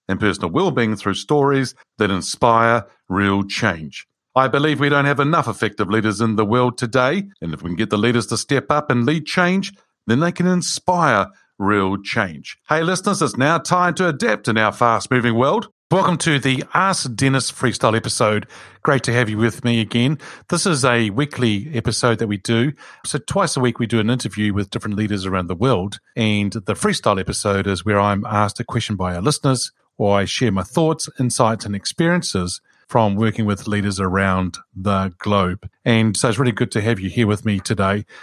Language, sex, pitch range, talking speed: English, male, 105-140 Hz, 200 wpm